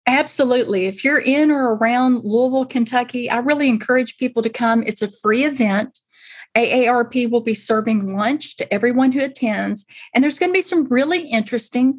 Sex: female